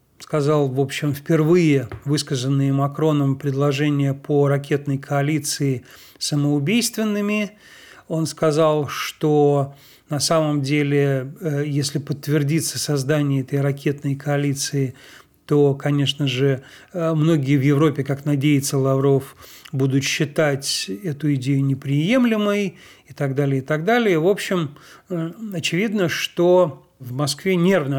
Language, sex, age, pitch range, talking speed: Russian, male, 40-59, 140-170 Hz, 105 wpm